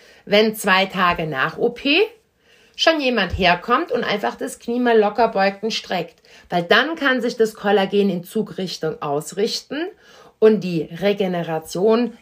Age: 60-79